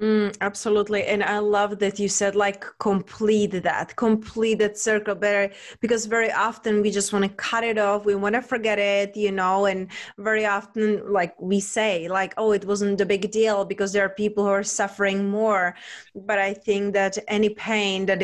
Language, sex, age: English, female, 20-39